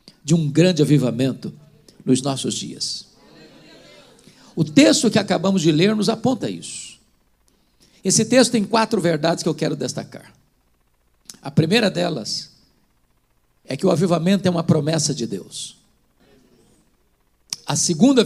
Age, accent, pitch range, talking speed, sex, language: 50-69, Brazilian, 160-215 Hz, 130 wpm, male, Portuguese